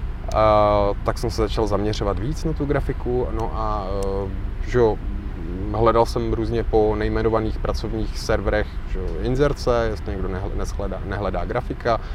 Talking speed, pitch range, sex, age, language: 140 wpm, 95-115 Hz, male, 20-39, Czech